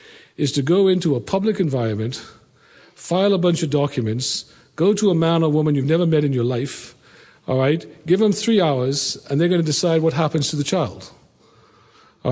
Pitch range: 130-170 Hz